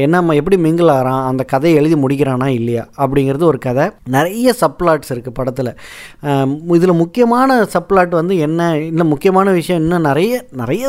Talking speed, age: 155 wpm, 20-39